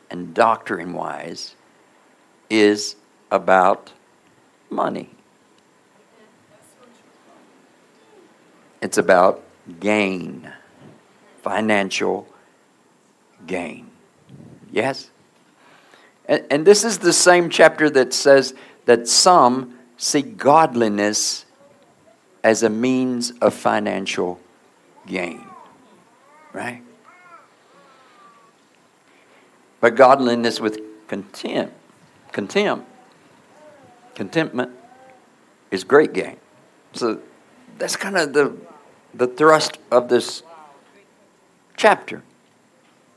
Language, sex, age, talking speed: English, male, 60-79, 70 wpm